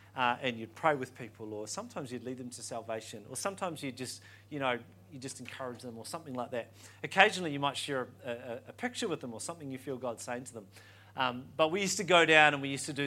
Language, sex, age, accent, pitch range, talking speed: English, male, 40-59, Australian, 120-155 Hz, 260 wpm